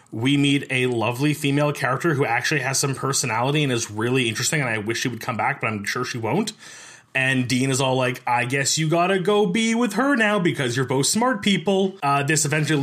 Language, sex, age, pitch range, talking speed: English, male, 30-49, 130-175 Hz, 235 wpm